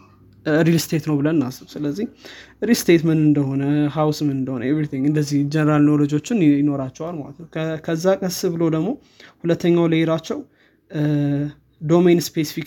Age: 20-39